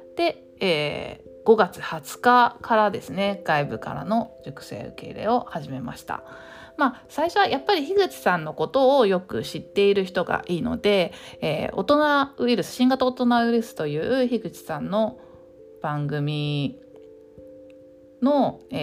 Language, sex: Japanese, female